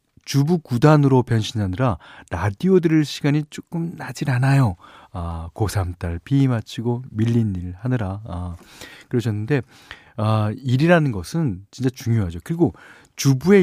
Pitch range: 100-155 Hz